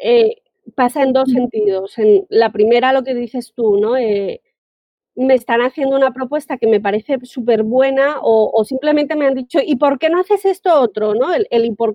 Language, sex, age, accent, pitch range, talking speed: Spanish, female, 30-49, Spanish, 235-335 Hz, 205 wpm